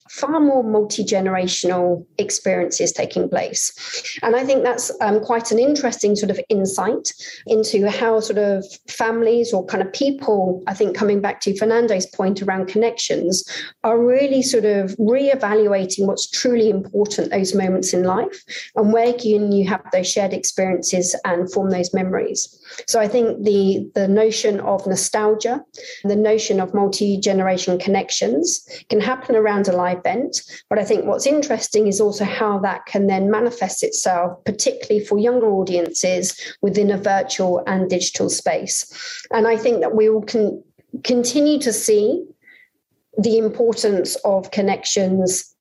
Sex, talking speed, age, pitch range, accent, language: female, 150 wpm, 40-59, 190-235 Hz, British, English